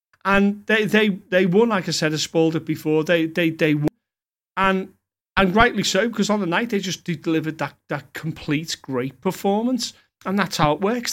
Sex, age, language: male, 40-59, English